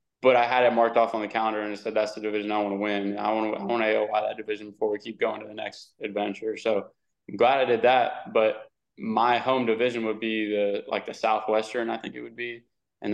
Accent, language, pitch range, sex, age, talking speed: American, English, 105-115 Hz, male, 20-39, 265 wpm